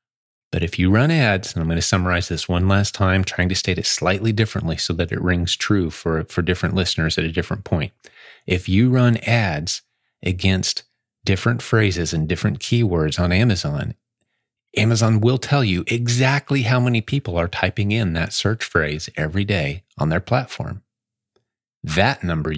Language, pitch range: English, 90-115 Hz